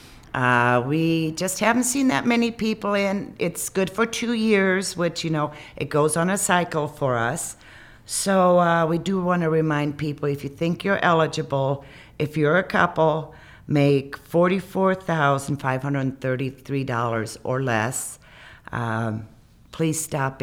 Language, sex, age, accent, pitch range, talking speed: English, female, 50-69, American, 125-160 Hz, 165 wpm